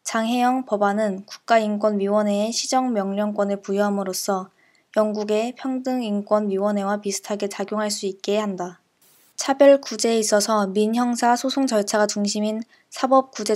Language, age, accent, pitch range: Korean, 20-39, native, 200-230 Hz